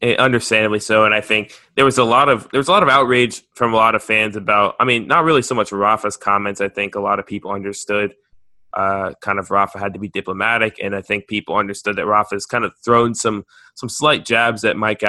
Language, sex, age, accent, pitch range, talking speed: English, male, 20-39, American, 100-115 Hz, 245 wpm